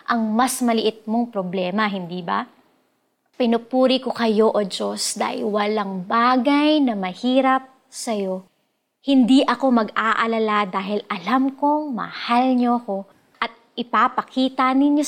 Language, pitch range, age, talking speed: Filipino, 210-285 Hz, 20-39, 120 wpm